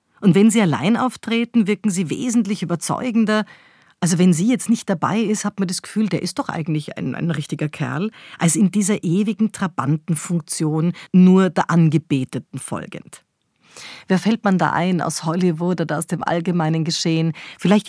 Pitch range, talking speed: 170-215 Hz, 170 wpm